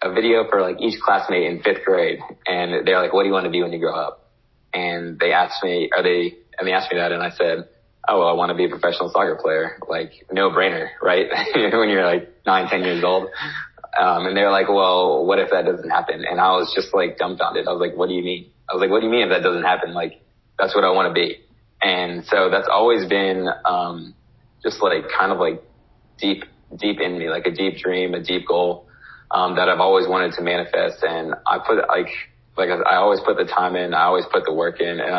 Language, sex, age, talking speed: English, male, 20-39, 245 wpm